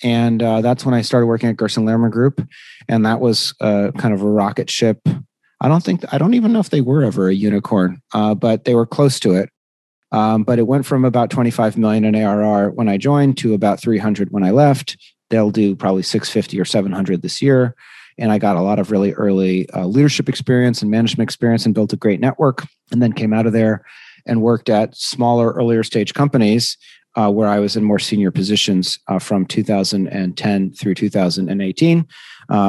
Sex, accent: male, American